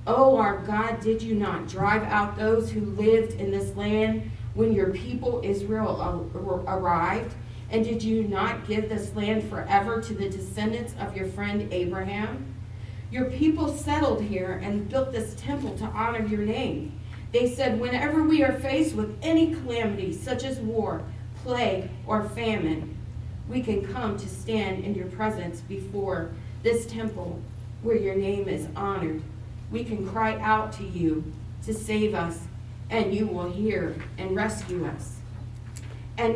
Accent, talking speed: American, 155 wpm